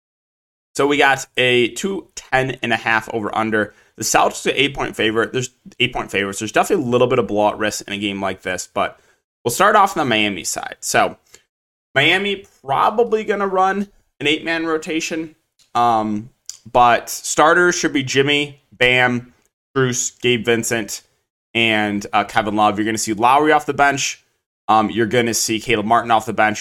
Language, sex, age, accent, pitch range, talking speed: English, male, 20-39, American, 105-140 Hz, 190 wpm